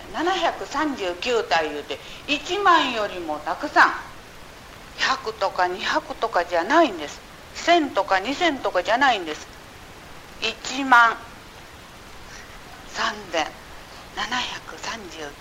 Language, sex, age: Japanese, female, 50-69